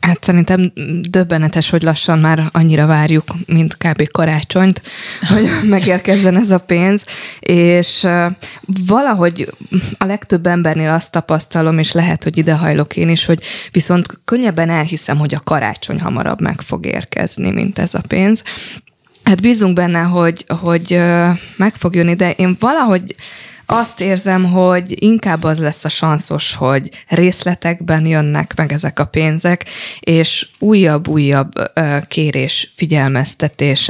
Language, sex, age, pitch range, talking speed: Hungarian, female, 20-39, 155-185 Hz, 135 wpm